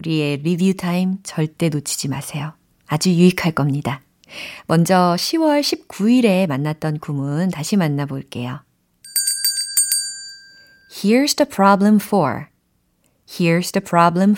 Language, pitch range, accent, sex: Korean, 155-225 Hz, native, female